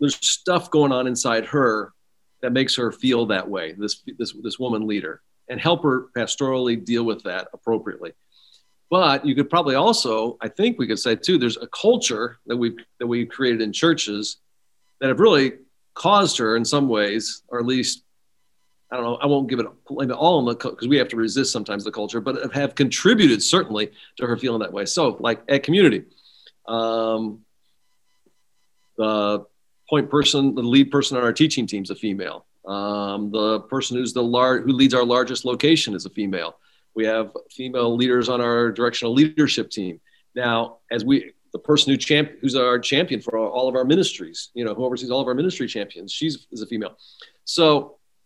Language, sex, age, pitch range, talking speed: English, male, 50-69, 115-145 Hz, 195 wpm